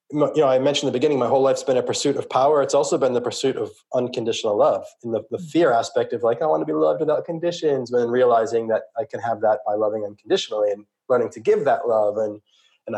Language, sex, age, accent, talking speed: English, male, 20-39, American, 250 wpm